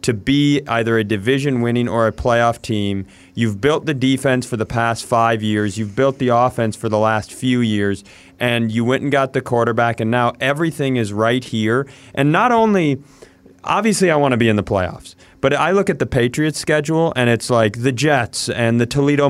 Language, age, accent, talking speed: English, 30-49, American, 200 wpm